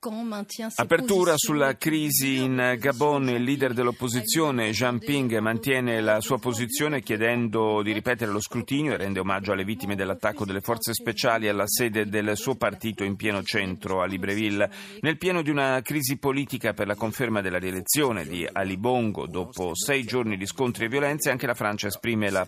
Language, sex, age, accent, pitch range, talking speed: Italian, male, 40-59, native, 100-130 Hz, 170 wpm